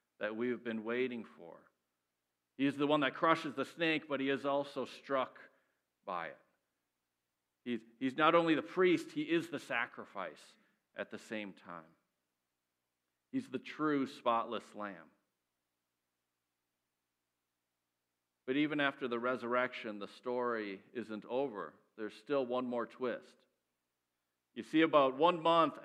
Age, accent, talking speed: 50-69, American, 135 wpm